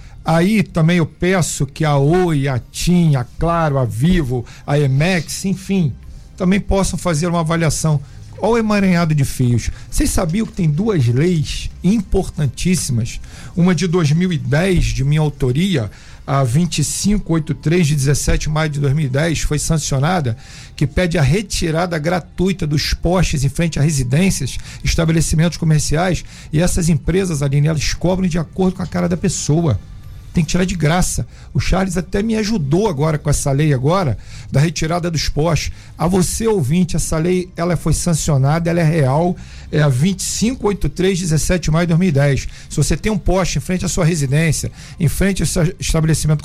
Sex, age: male, 50-69